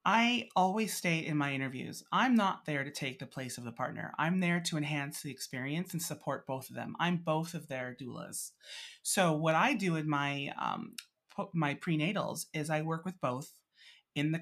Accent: American